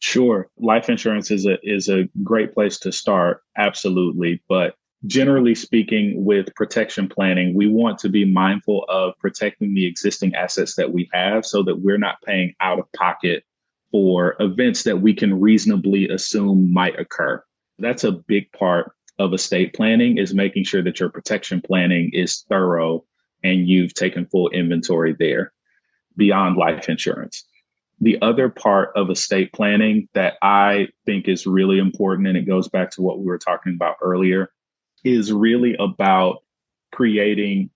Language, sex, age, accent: English, male, 30-49, American